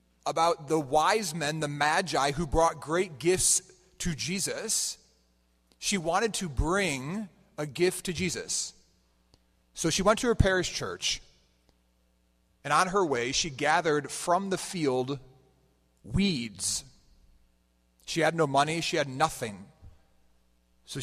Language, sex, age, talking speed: English, male, 40-59, 130 wpm